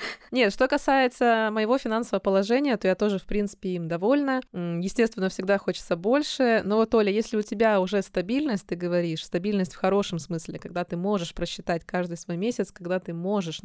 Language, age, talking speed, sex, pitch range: Russian, 20-39, 180 wpm, female, 180-225 Hz